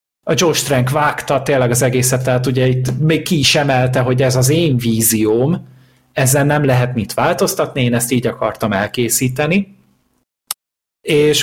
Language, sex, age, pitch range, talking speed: Hungarian, male, 30-49, 120-145 Hz, 160 wpm